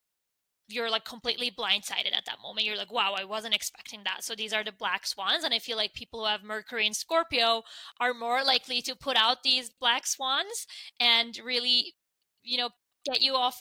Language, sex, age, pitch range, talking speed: English, female, 10-29, 210-245 Hz, 205 wpm